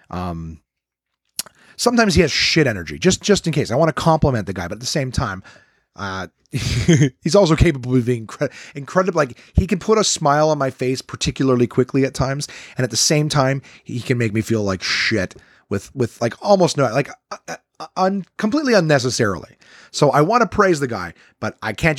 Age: 30-49